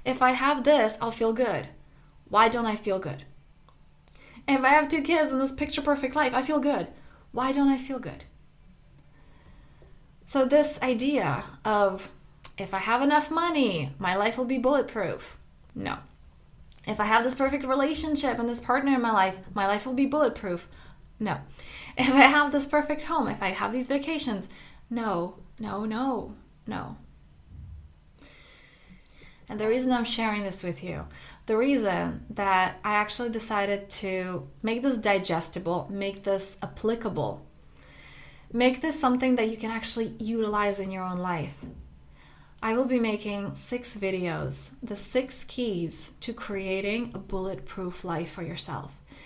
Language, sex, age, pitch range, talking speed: English, female, 20-39, 190-260 Hz, 155 wpm